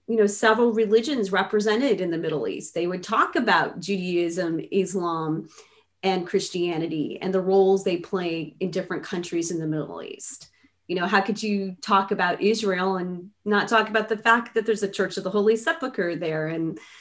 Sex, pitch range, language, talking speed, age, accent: female, 185-225 Hz, English, 185 wpm, 30-49, American